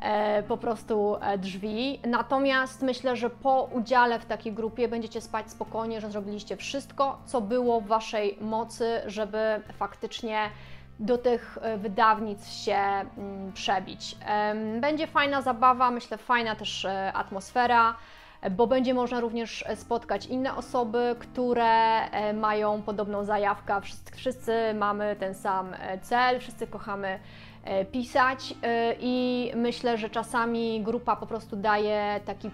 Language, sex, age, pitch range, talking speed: Polish, female, 20-39, 205-240 Hz, 120 wpm